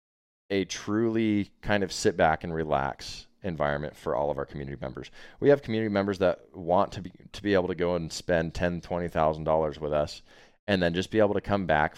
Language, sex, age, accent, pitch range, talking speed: English, male, 20-39, American, 80-95 Hz, 220 wpm